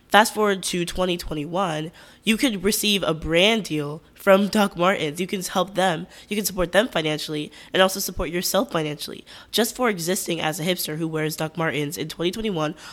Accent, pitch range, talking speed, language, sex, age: American, 160-195 Hz, 180 wpm, English, female, 10-29